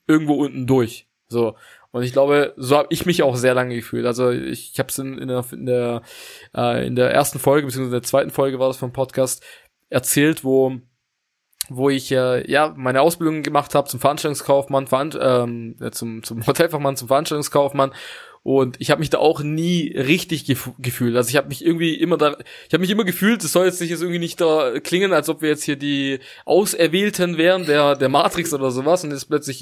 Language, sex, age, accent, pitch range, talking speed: German, male, 20-39, German, 135-160 Hz, 210 wpm